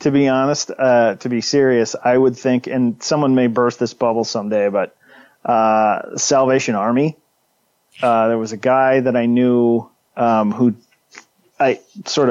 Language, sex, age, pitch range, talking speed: English, male, 30-49, 115-130 Hz, 160 wpm